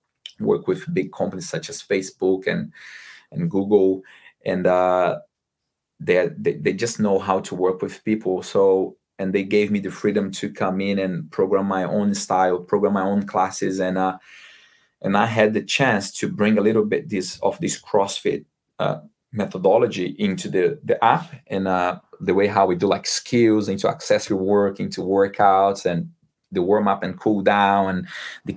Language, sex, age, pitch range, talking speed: English, male, 20-39, 95-110 Hz, 180 wpm